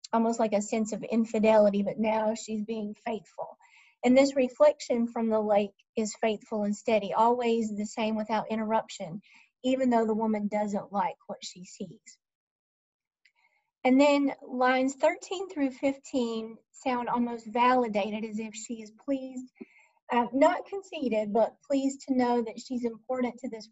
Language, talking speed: English, 150 wpm